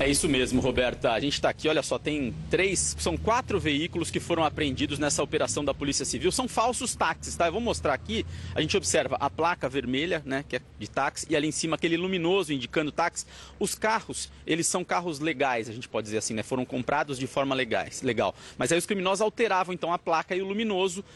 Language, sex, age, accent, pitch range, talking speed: Portuguese, male, 40-59, Brazilian, 155-205 Hz, 220 wpm